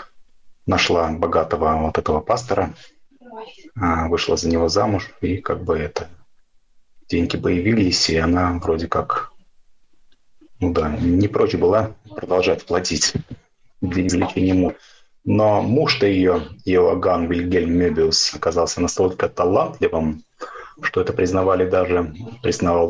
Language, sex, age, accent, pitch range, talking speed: Russian, male, 30-49, native, 85-105 Hz, 115 wpm